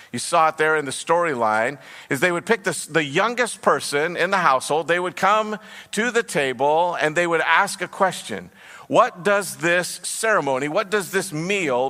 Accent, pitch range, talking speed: American, 125-165 Hz, 190 wpm